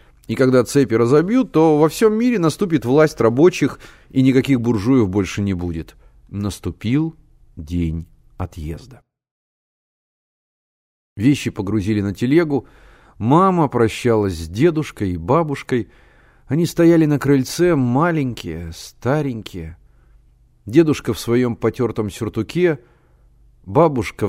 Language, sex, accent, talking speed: Russian, male, native, 105 wpm